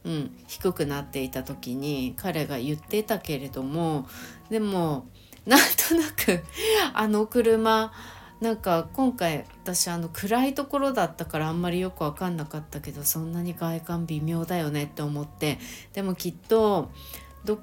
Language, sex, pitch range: Japanese, female, 145-180 Hz